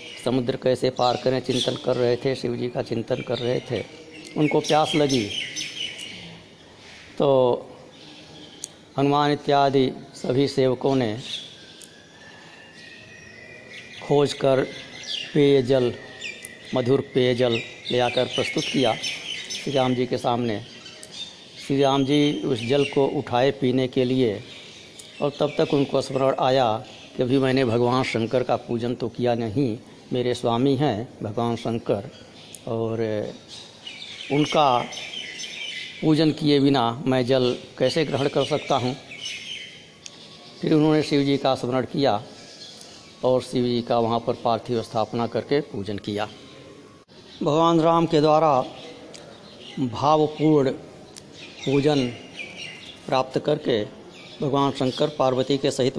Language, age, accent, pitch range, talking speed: Hindi, 60-79, native, 120-145 Hz, 120 wpm